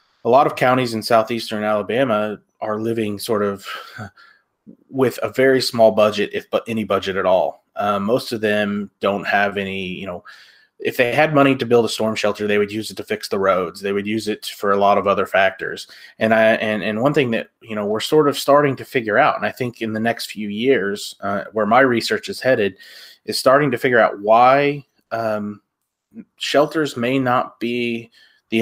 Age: 30-49